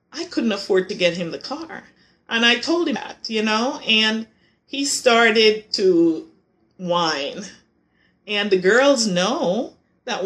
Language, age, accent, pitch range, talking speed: English, 40-59, American, 220-340 Hz, 145 wpm